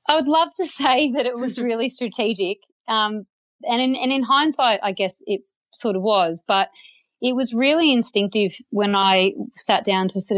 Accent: Australian